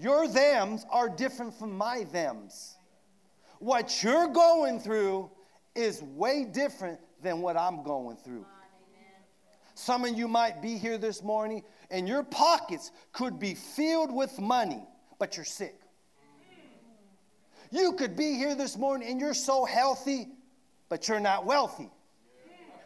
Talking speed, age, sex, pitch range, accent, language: 135 wpm, 40-59, male, 190-275 Hz, American, English